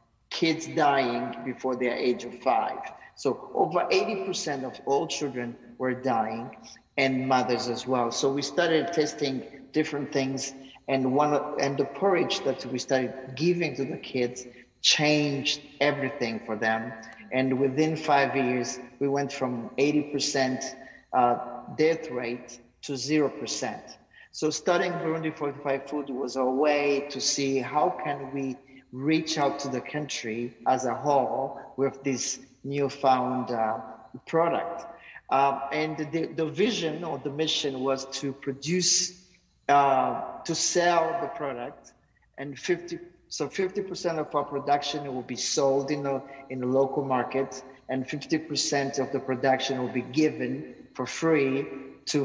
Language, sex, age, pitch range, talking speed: English, male, 50-69, 130-150 Hz, 145 wpm